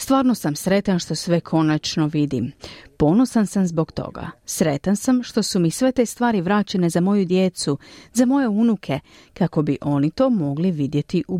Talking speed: 175 wpm